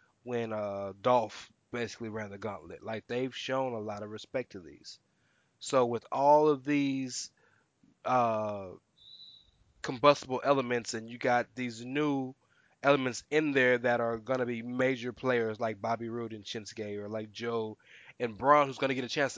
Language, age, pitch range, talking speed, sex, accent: English, 20-39, 115-135 Hz, 170 wpm, male, American